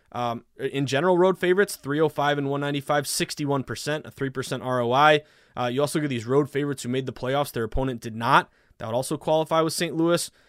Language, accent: English, American